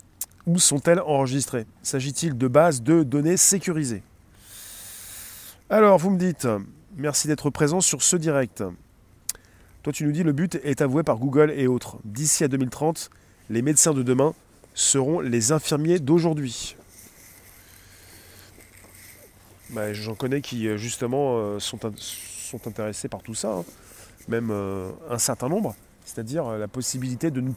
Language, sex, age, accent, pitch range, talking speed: French, male, 30-49, French, 100-145 Hz, 135 wpm